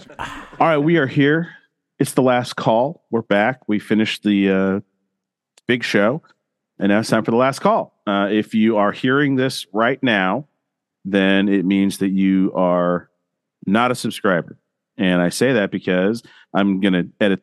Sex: male